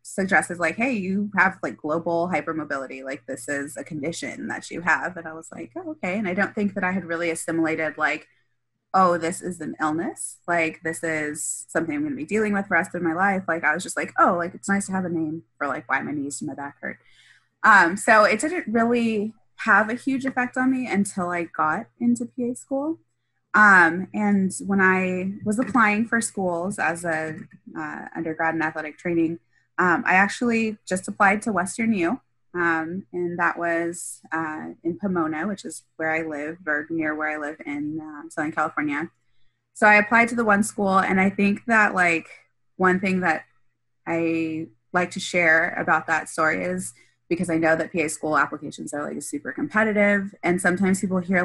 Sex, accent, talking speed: female, American, 200 wpm